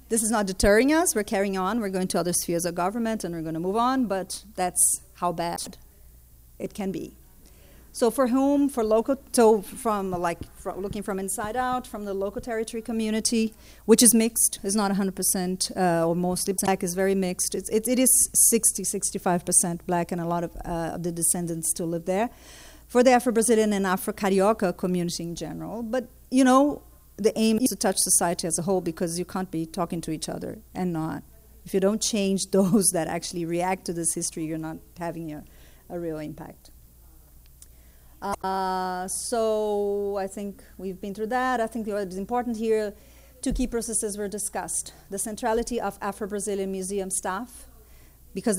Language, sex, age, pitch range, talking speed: English, female, 40-59, 175-220 Hz, 185 wpm